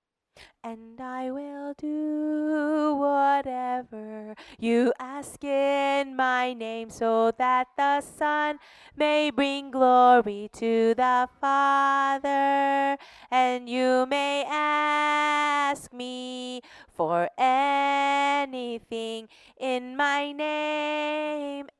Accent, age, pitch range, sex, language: American, 20-39, 245-300 Hz, female, Korean